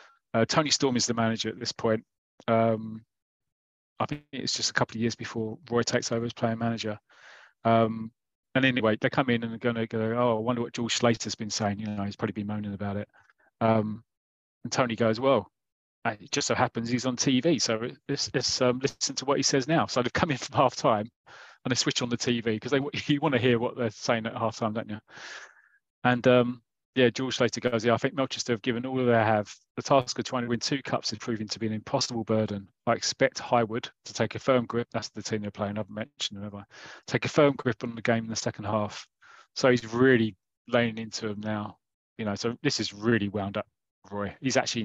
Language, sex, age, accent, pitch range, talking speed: English, male, 30-49, British, 110-125 Hz, 235 wpm